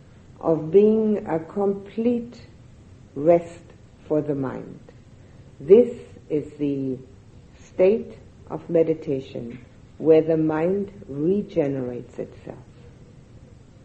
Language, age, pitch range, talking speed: English, 60-79, 120-165 Hz, 80 wpm